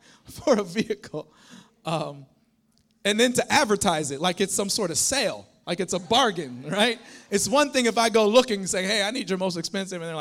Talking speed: 220 wpm